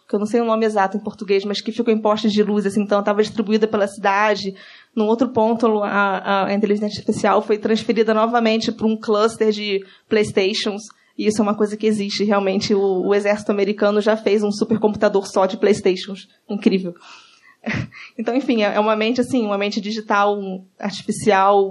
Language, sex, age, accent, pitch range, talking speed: Portuguese, female, 20-39, Brazilian, 195-220 Hz, 185 wpm